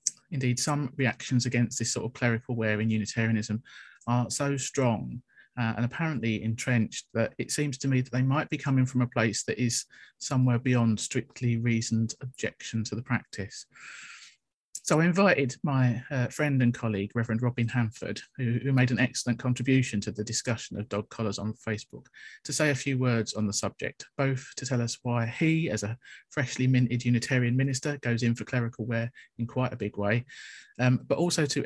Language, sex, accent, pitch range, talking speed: English, male, British, 110-130 Hz, 190 wpm